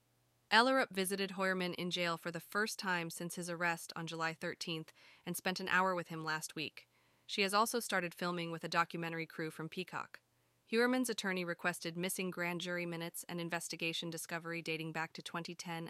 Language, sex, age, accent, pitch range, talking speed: English, female, 20-39, American, 170-210 Hz, 180 wpm